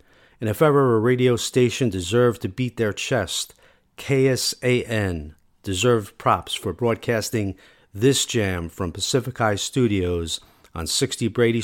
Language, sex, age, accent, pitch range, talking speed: English, male, 40-59, American, 95-120 Hz, 130 wpm